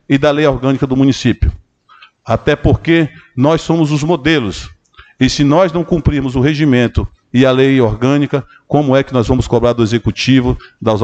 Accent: Brazilian